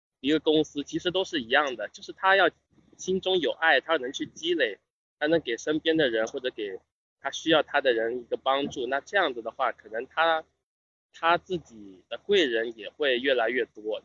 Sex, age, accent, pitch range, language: male, 20-39, native, 125-185 Hz, Chinese